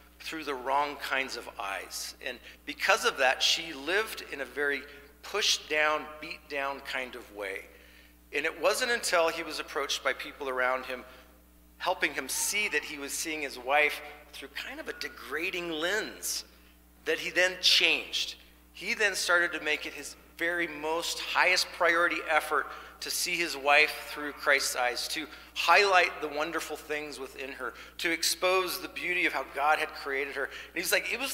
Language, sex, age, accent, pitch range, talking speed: English, male, 40-59, American, 140-175 Hz, 180 wpm